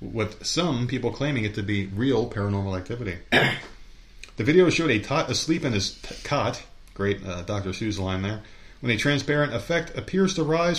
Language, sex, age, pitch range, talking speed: English, male, 30-49, 100-145 Hz, 185 wpm